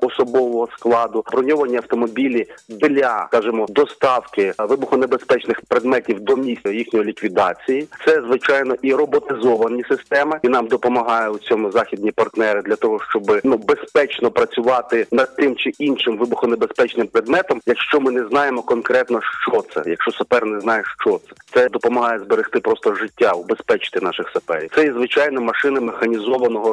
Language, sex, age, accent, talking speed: Ukrainian, male, 40-59, native, 140 wpm